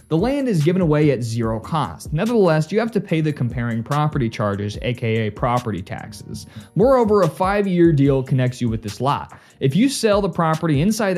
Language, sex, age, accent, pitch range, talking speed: English, male, 20-39, American, 125-190 Hz, 190 wpm